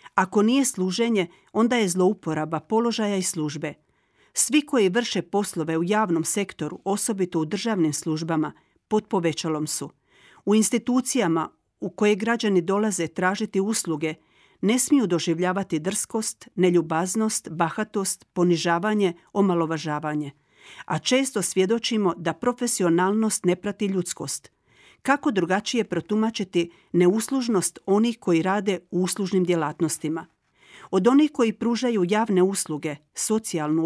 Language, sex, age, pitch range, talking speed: Croatian, female, 50-69, 170-220 Hz, 115 wpm